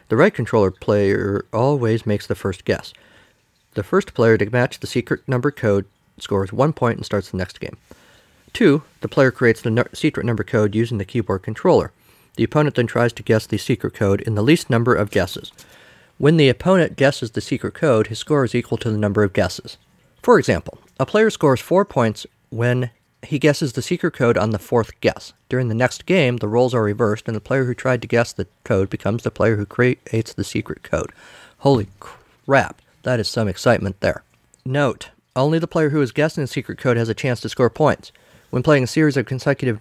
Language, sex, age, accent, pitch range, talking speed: English, male, 50-69, American, 110-140 Hz, 210 wpm